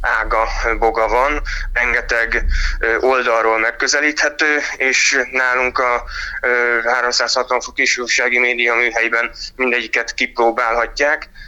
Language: Hungarian